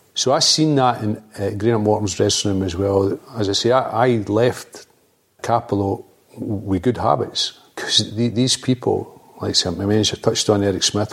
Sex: male